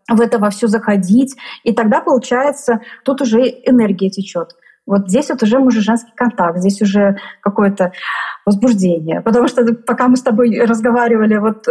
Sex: female